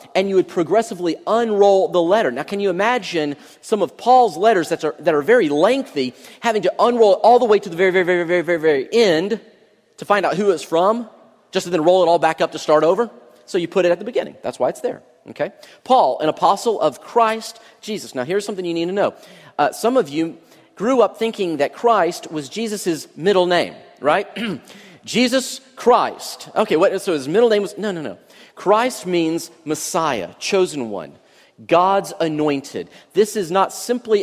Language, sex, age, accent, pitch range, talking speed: English, male, 40-59, American, 155-215 Hz, 200 wpm